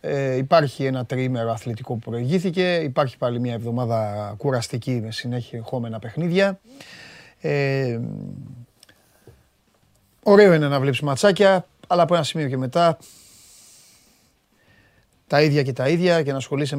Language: Greek